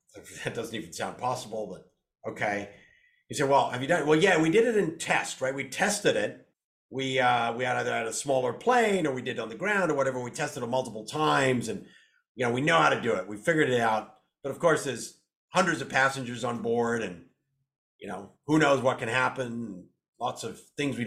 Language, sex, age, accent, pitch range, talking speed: English, male, 50-69, American, 110-135 Hz, 235 wpm